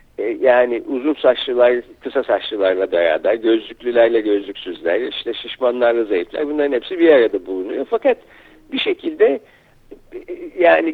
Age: 60-79